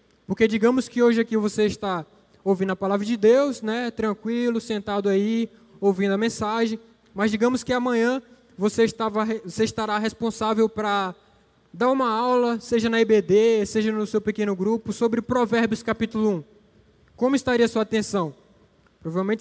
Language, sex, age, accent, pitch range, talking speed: Portuguese, male, 20-39, Brazilian, 205-240 Hz, 155 wpm